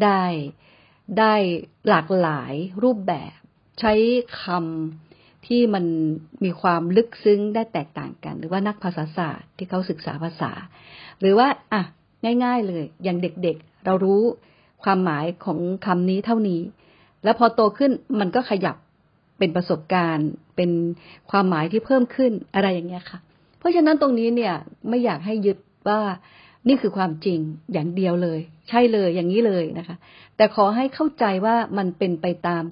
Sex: female